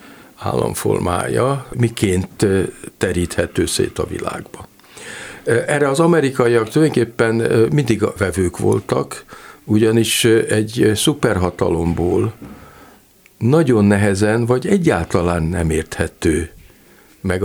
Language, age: Hungarian, 60-79